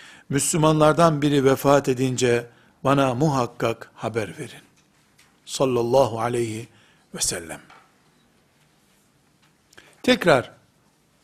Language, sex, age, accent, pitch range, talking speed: Turkish, male, 60-79, native, 130-180 Hz, 70 wpm